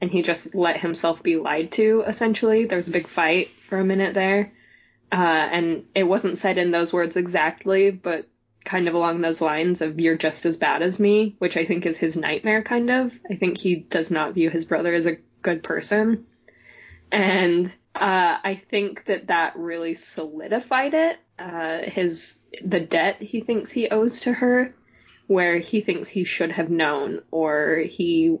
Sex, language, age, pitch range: female, English, 20-39, 165-210 Hz